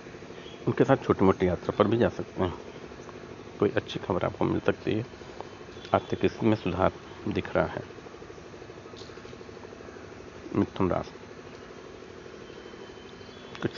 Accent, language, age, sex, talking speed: native, Hindi, 60-79, male, 115 wpm